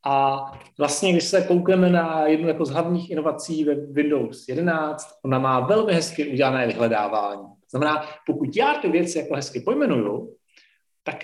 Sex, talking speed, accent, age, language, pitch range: male, 150 wpm, native, 40-59, Czech, 135-165 Hz